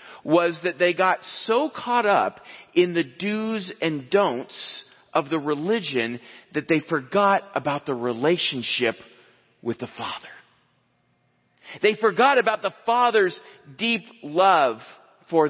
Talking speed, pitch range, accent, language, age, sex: 125 wpm, 150-210 Hz, American, English, 40-59, male